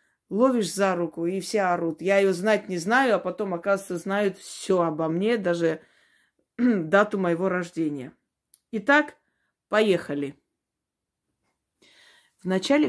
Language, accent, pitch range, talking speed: Russian, native, 170-215 Hz, 115 wpm